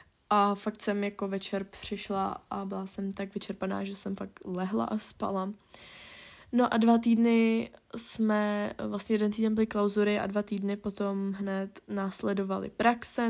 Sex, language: female, Czech